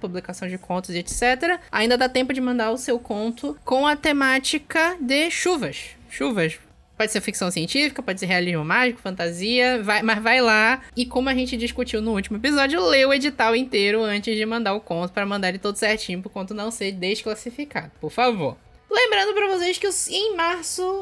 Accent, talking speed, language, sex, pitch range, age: Brazilian, 190 wpm, Portuguese, female, 220-330 Hz, 20-39